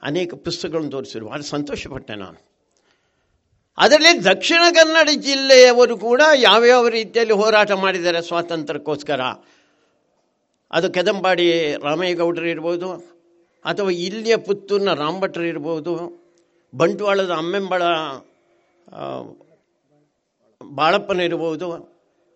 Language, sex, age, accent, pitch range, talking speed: Kannada, male, 60-79, native, 165-240 Hz, 75 wpm